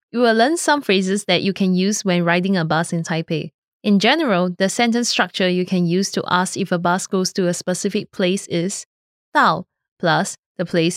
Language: English